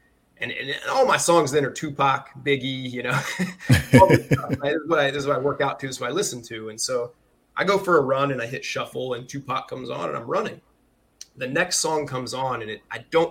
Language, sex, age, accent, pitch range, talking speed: English, male, 20-39, American, 125-145 Hz, 235 wpm